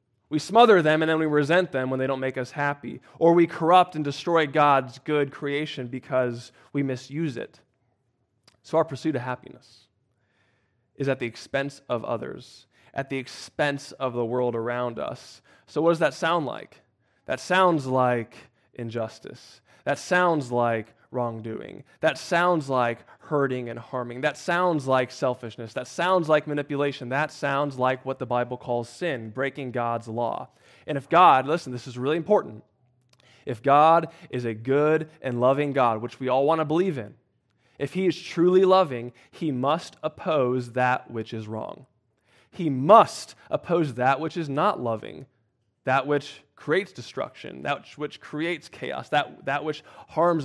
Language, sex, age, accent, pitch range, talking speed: English, male, 20-39, American, 120-150 Hz, 165 wpm